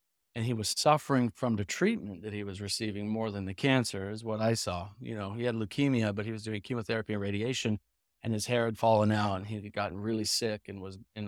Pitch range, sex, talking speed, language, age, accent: 105-130 Hz, male, 245 wpm, English, 40-59, American